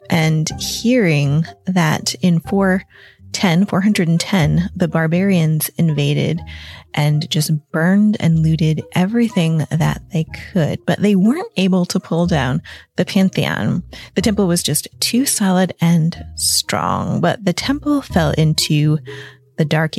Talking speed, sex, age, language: 125 wpm, female, 20-39, English